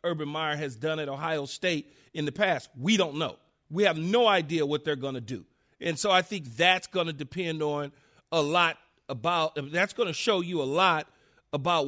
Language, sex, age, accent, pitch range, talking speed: English, male, 40-59, American, 155-190 Hz, 210 wpm